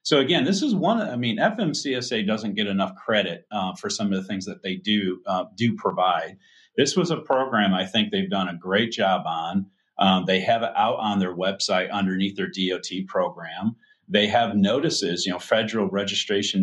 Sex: male